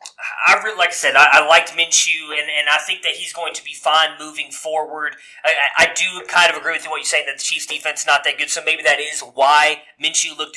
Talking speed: 250 wpm